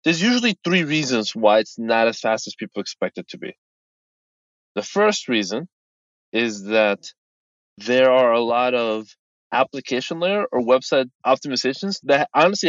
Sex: male